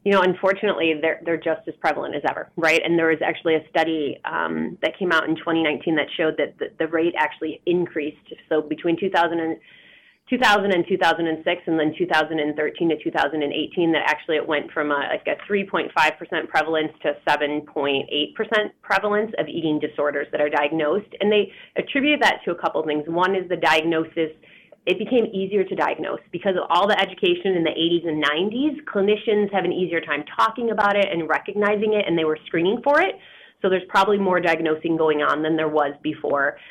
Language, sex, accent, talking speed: English, female, American, 190 wpm